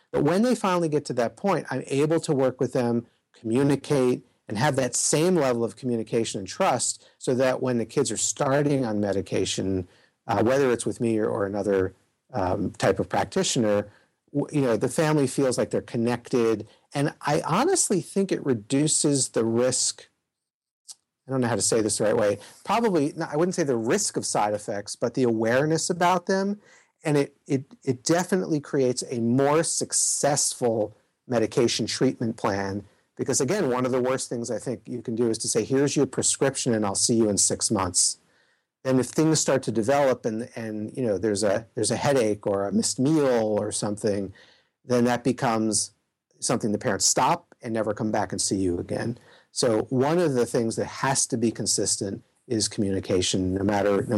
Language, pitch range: English, 110-140 Hz